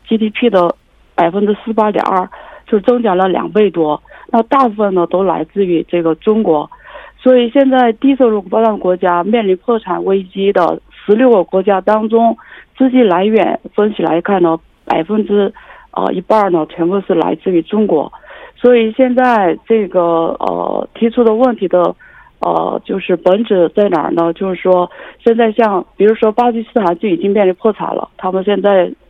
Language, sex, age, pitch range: Korean, female, 50-69, 180-235 Hz